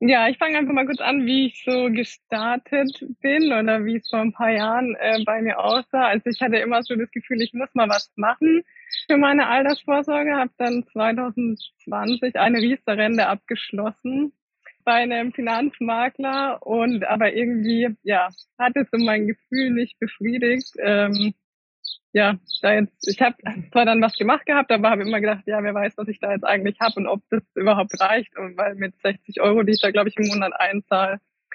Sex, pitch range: female, 210-260 Hz